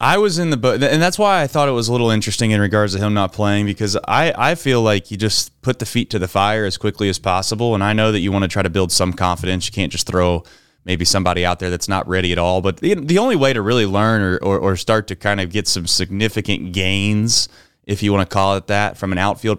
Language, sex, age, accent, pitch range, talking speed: English, male, 20-39, American, 95-110 Hz, 280 wpm